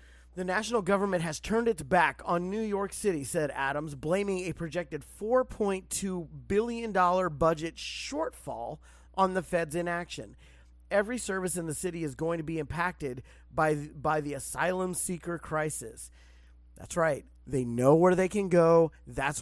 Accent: American